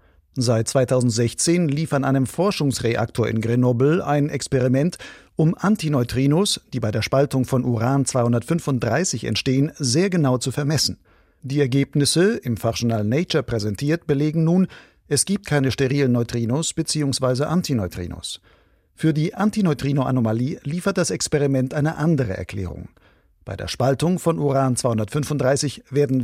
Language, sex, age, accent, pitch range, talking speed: German, male, 50-69, German, 120-155 Hz, 120 wpm